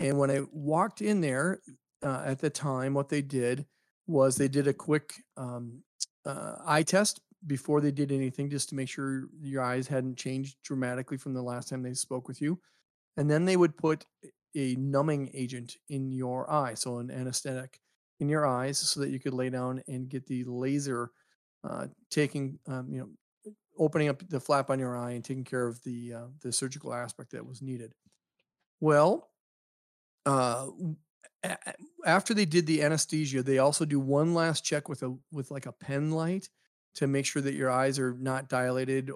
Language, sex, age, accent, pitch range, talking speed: English, male, 40-59, American, 130-150 Hz, 190 wpm